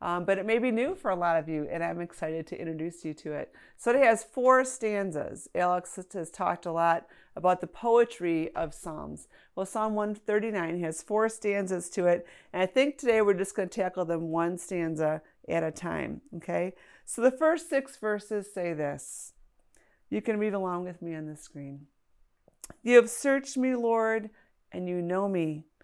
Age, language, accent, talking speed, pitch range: 40-59, English, American, 195 wpm, 170-225 Hz